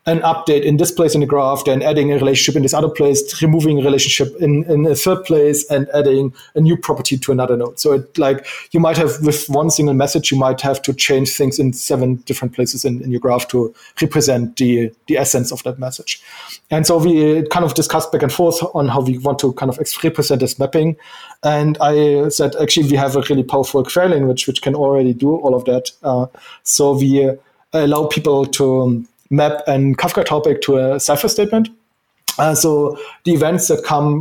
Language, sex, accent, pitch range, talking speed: English, male, German, 130-155 Hz, 215 wpm